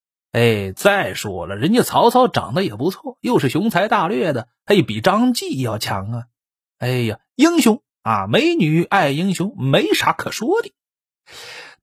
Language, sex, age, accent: Chinese, male, 30-49, native